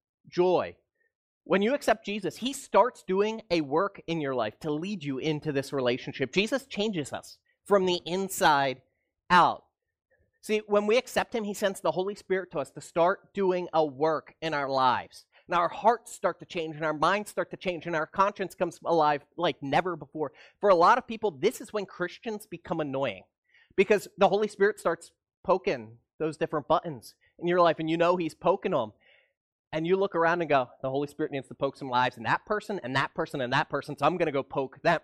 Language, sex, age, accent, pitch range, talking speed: English, male, 30-49, American, 160-220 Hz, 215 wpm